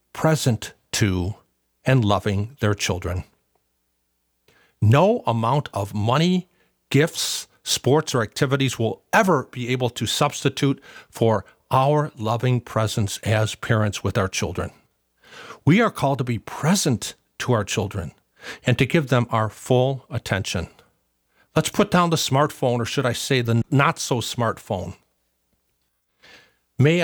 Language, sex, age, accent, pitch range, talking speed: English, male, 50-69, American, 100-130 Hz, 130 wpm